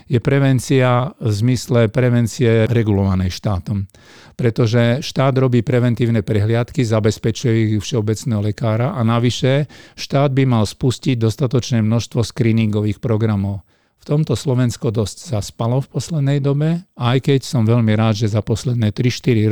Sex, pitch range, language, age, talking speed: male, 110-125 Hz, Slovak, 50-69, 135 wpm